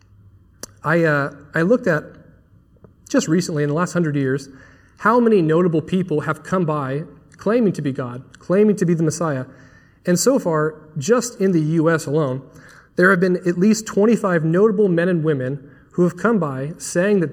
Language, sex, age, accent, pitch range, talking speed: English, male, 30-49, American, 140-180 Hz, 175 wpm